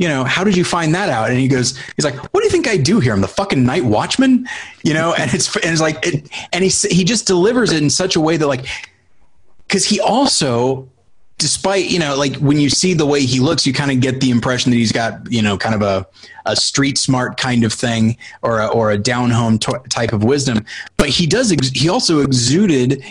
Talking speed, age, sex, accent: 245 wpm, 30-49, male, American